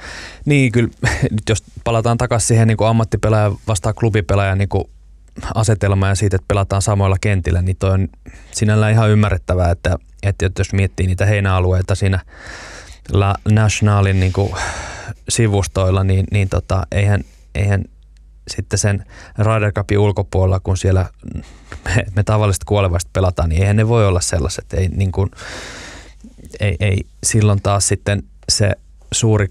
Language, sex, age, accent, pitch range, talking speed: Finnish, male, 20-39, native, 90-105 Hz, 140 wpm